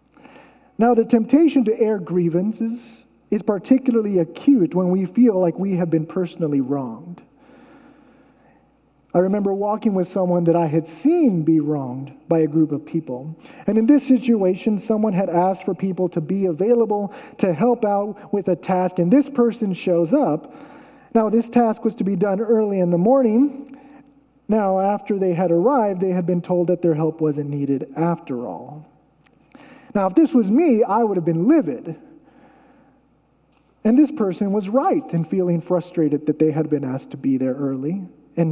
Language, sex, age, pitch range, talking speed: English, male, 30-49, 170-265 Hz, 175 wpm